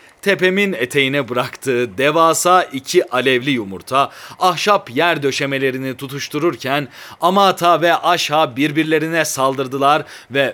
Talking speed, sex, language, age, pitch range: 95 wpm, male, Turkish, 40-59, 130-170 Hz